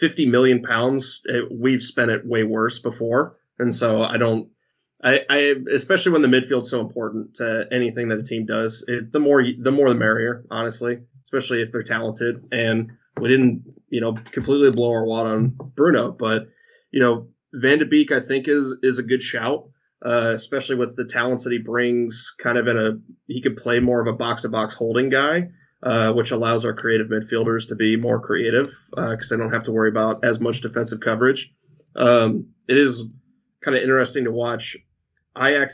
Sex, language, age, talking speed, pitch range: male, English, 20-39, 195 wpm, 115-130 Hz